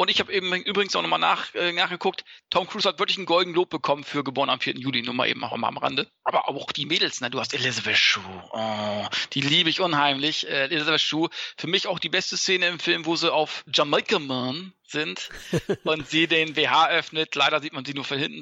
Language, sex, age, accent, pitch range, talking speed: German, male, 40-59, German, 145-175 Hz, 240 wpm